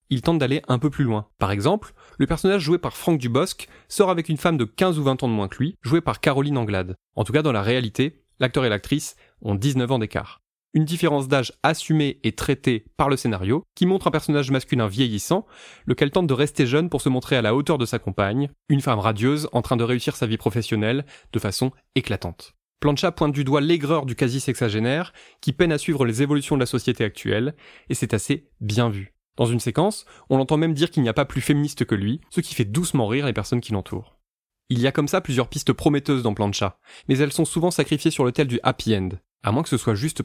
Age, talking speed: 20-39, 240 wpm